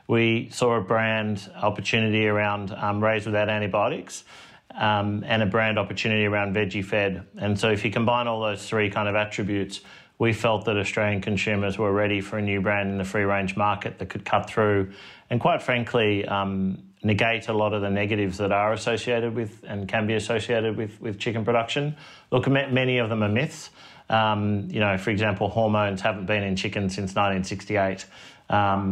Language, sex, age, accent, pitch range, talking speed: English, male, 30-49, Australian, 100-115 Hz, 185 wpm